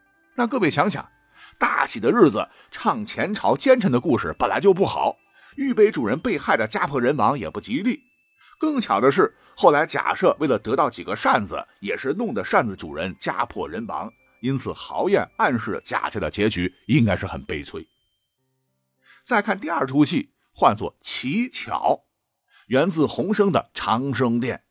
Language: Chinese